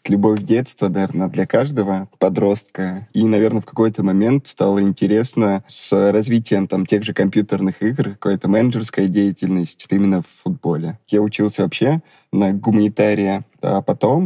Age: 20-39